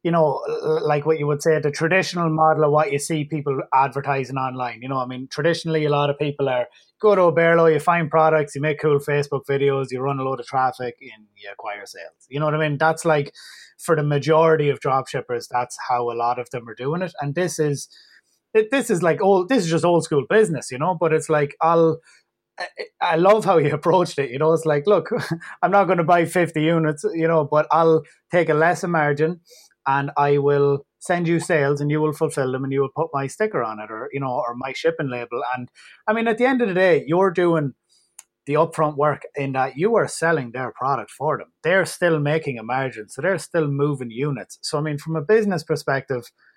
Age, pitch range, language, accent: 20-39, 140-170 Hz, English, Irish